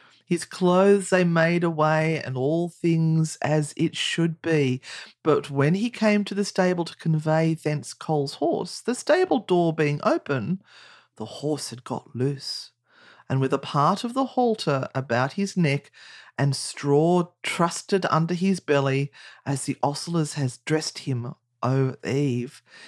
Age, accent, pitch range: 40-59, Australian, 145-195 Hz